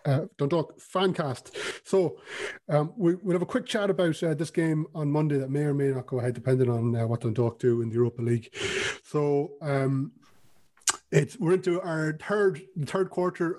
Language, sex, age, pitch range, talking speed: English, male, 30-49, 135-165 Hz, 190 wpm